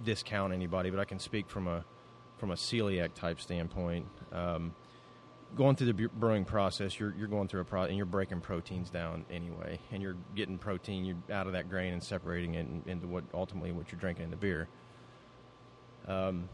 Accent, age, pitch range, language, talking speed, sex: American, 30-49, 85-105 Hz, English, 190 wpm, male